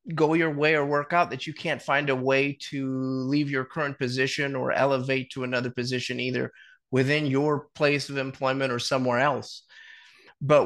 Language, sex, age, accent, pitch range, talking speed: English, male, 30-49, American, 125-145 Hz, 180 wpm